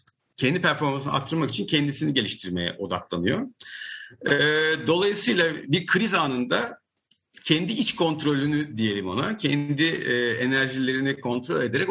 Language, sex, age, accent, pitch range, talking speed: Turkish, male, 50-69, native, 110-165 Hz, 100 wpm